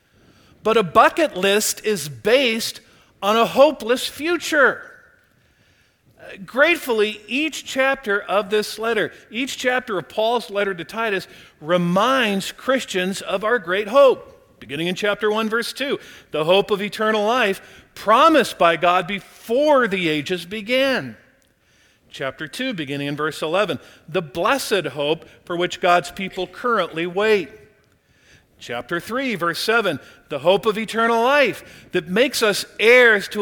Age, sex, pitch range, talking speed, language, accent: 50-69, male, 160-230 Hz, 135 wpm, English, American